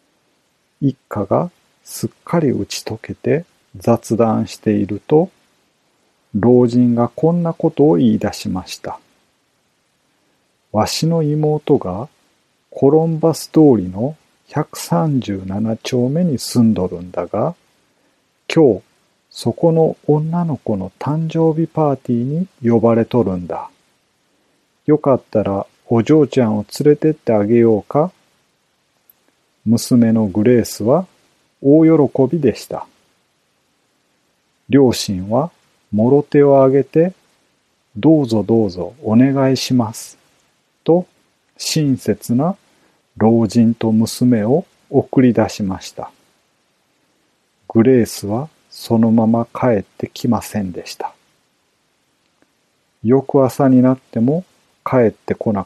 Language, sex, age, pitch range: Japanese, male, 40-59, 110-150 Hz